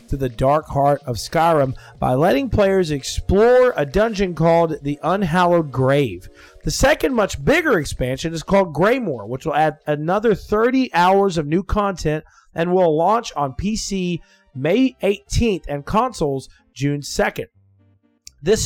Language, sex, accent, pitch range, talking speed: English, male, American, 155-205 Hz, 145 wpm